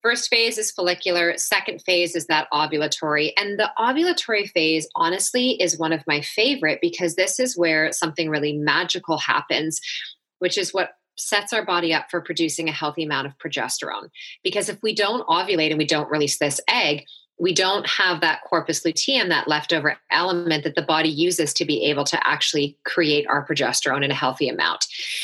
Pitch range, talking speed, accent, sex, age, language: 155-185 Hz, 185 wpm, American, female, 30-49, English